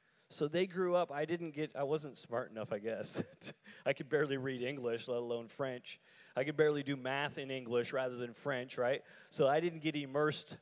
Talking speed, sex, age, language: 210 wpm, male, 30-49, English